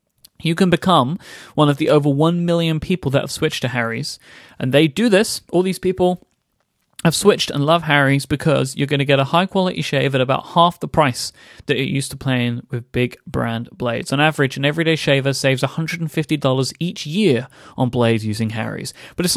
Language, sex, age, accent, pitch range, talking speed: English, male, 30-49, British, 130-165 Hz, 200 wpm